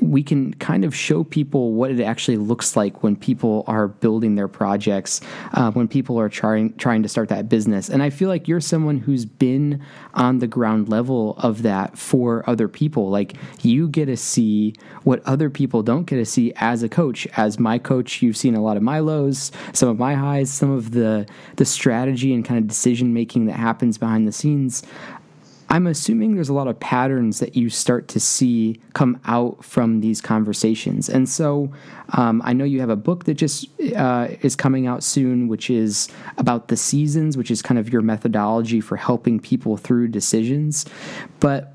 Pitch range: 110-135 Hz